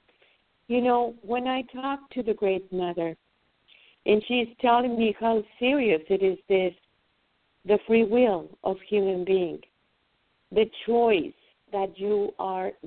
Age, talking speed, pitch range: 50-69, 135 wpm, 185-235 Hz